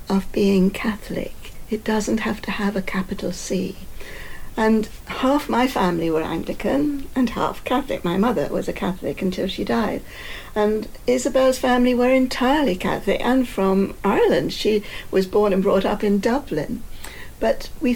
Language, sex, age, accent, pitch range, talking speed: English, female, 60-79, British, 190-245 Hz, 155 wpm